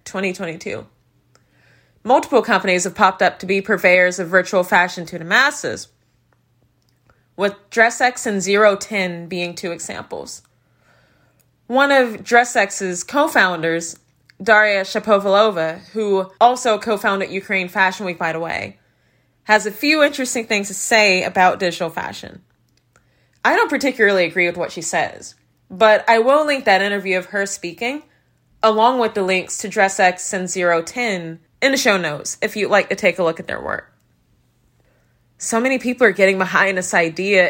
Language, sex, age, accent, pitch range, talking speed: English, female, 20-39, American, 180-225 Hz, 150 wpm